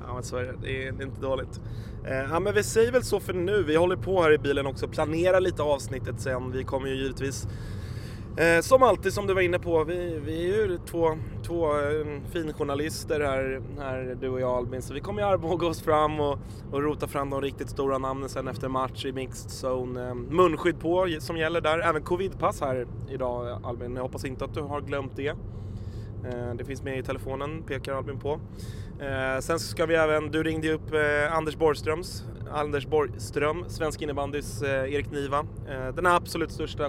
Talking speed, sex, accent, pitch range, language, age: 190 wpm, male, native, 120-155 Hz, Swedish, 20-39